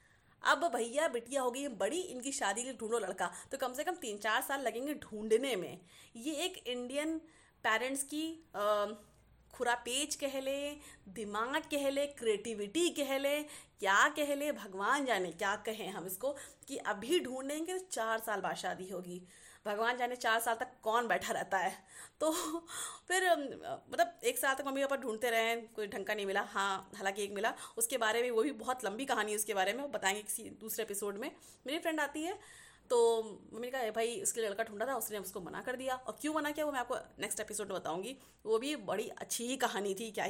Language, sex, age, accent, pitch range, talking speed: Hindi, female, 30-49, native, 225-320 Hz, 195 wpm